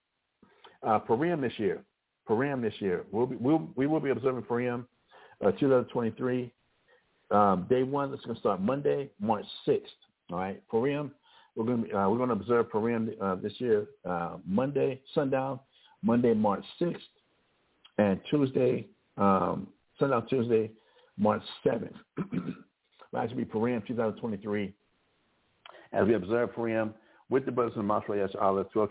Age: 60-79